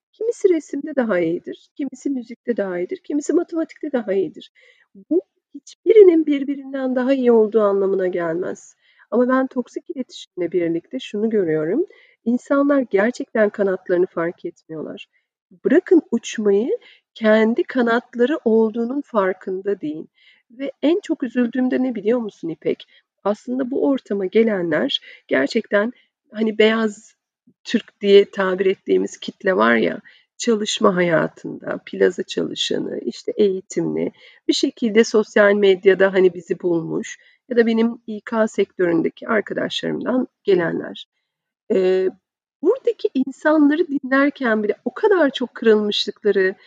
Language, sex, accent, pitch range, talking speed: Turkish, female, native, 205-295 Hz, 115 wpm